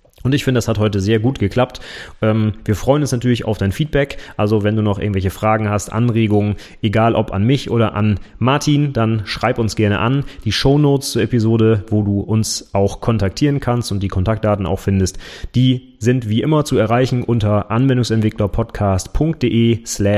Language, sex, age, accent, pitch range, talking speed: German, male, 30-49, German, 100-125 Hz, 180 wpm